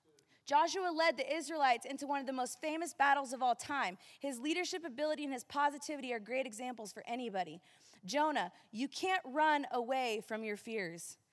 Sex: female